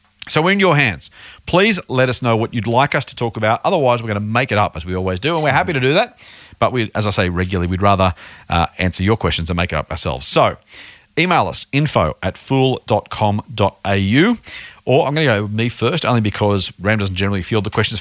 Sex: male